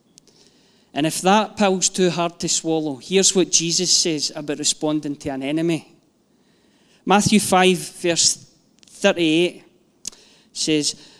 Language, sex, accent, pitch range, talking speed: English, male, British, 160-200 Hz, 120 wpm